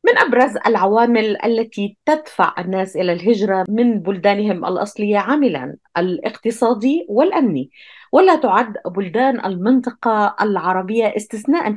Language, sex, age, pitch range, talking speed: Arabic, female, 30-49, 195-250 Hz, 100 wpm